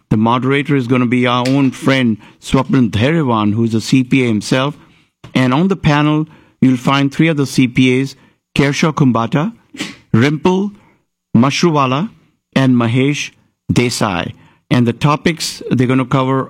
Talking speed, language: 140 wpm, English